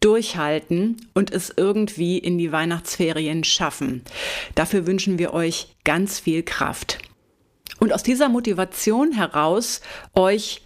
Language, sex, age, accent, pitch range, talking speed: German, female, 30-49, German, 180-225 Hz, 120 wpm